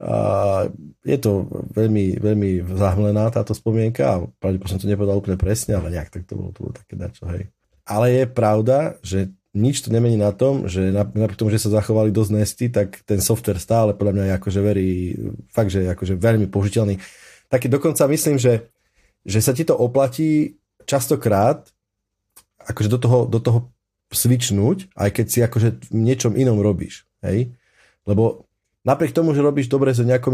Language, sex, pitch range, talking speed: Slovak, male, 100-120 Hz, 180 wpm